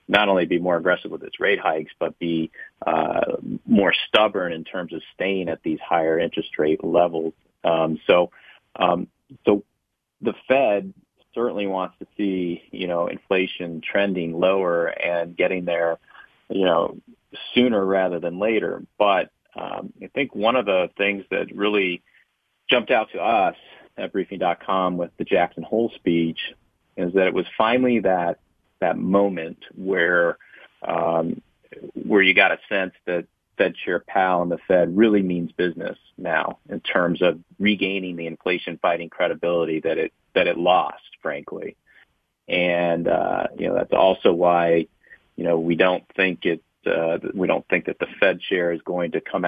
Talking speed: 165 wpm